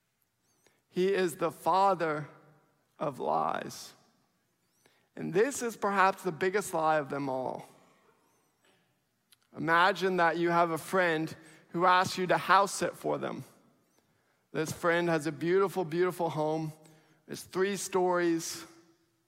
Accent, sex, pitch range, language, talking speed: American, male, 155-200 Hz, English, 125 wpm